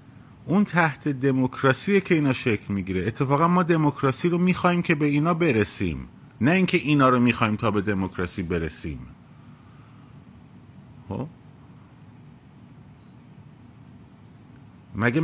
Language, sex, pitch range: Persian, male, 105-135 Hz